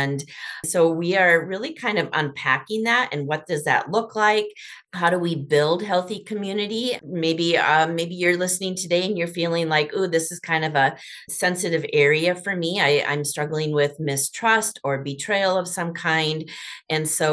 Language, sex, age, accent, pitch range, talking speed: English, female, 30-49, American, 145-185 Hz, 185 wpm